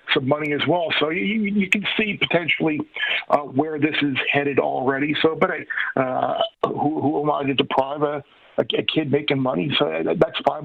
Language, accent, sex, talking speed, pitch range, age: English, American, male, 180 wpm, 140-170 Hz, 50-69